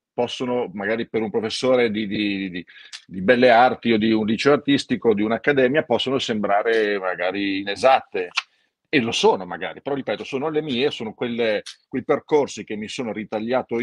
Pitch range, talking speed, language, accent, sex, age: 105-150 Hz, 175 wpm, Italian, native, male, 40-59